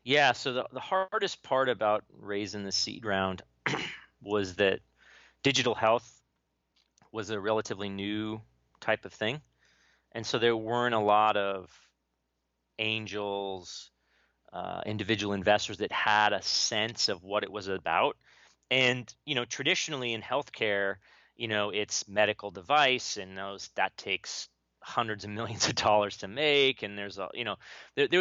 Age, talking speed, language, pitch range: 30-49, 150 wpm, English, 100-125 Hz